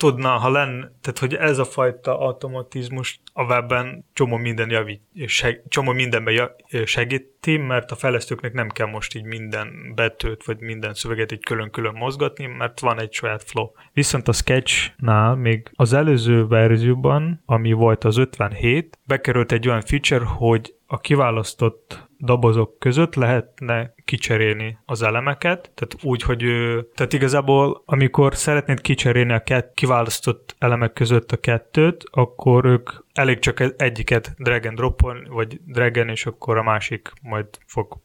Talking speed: 150 wpm